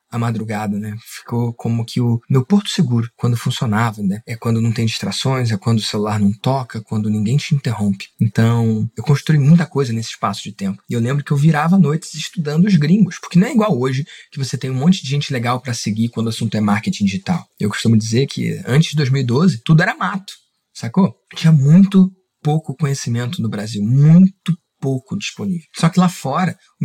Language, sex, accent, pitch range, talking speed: Portuguese, male, Brazilian, 130-180 Hz, 210 wpm